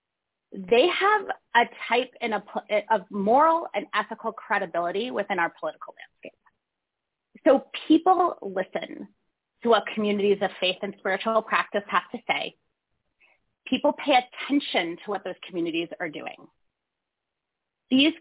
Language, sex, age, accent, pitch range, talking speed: English, female, 30-49, American, 205-290 Hz, 120 wpm